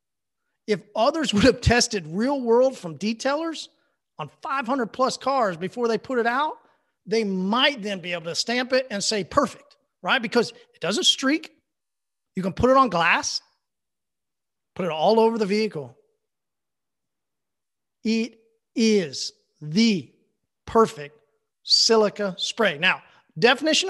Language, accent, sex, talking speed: English, American, male, 135 wpm